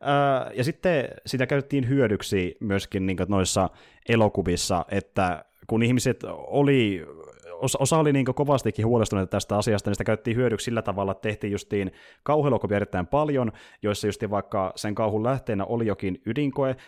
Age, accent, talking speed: 30-49, native, 135 wpm